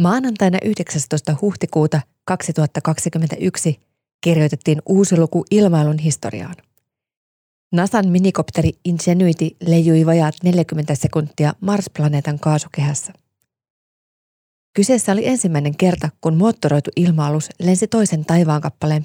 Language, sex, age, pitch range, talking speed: Finnish, female, 30-49, 150-180 Hz, 90 wpm